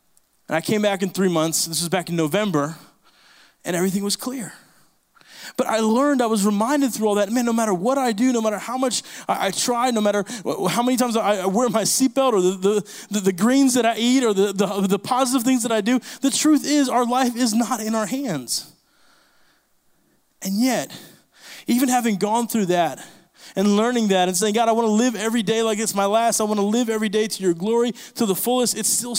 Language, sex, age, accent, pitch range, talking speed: English, male, 20-39, American, 190-245 Hz, 230 wpm